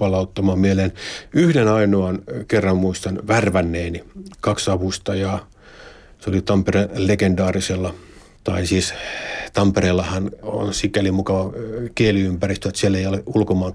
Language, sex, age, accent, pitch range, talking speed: Finnish, male, 50-69, native, 95-110 Hz, 110 wpm